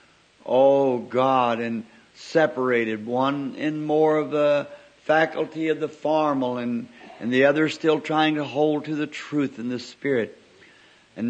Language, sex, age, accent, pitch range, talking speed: English, male, 60-79, American, 135-155 Hz, 150 wpm